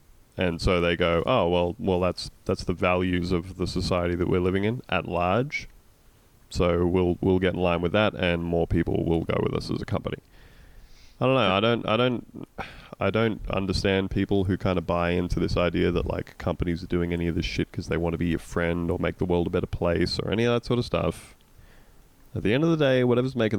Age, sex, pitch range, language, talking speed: 20-39, male, 85-110 Hz, English, 240 wpm